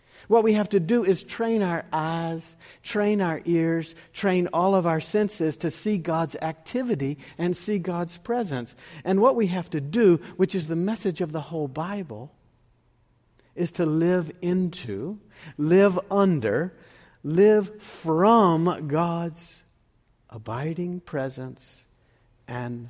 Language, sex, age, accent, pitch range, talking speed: English, male, 60-79, American, 125-185 Hz, 135 wpm